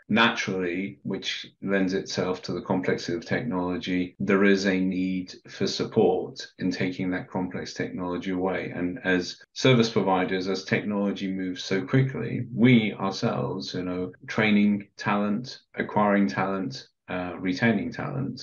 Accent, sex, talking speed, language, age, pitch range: British, male, 135 wpm, English, 30-49, 90-100 Hz